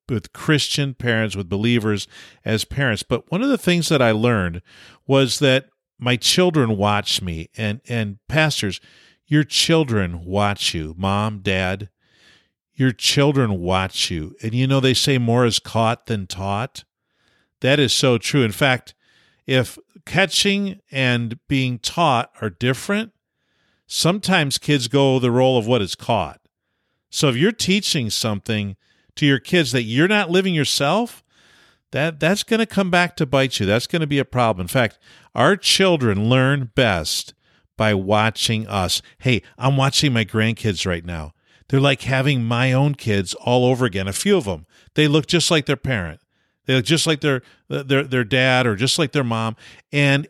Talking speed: 170 wpm